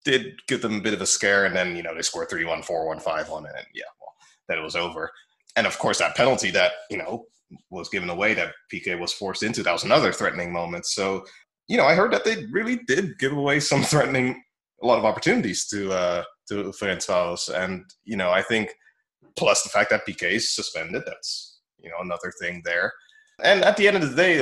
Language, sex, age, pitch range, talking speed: English, male, 20-39, 95-130 Hz, 220 wpm